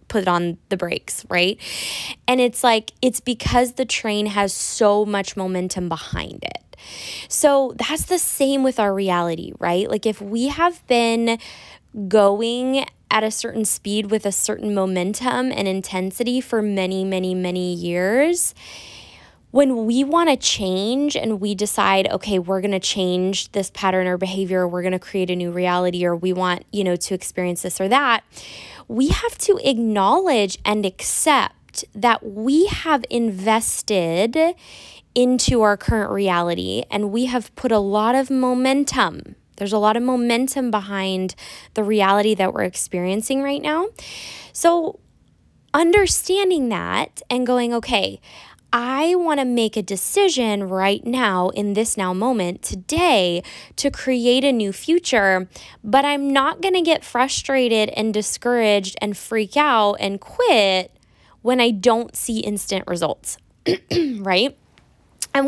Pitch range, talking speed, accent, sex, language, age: 190-260 Hz, 150 wpm, American, female, English, 20-39